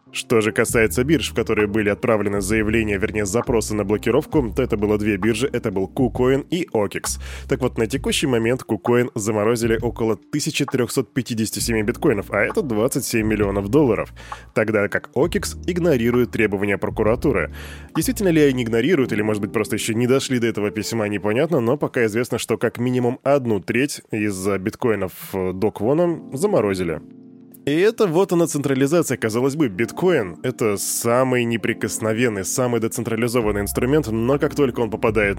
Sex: male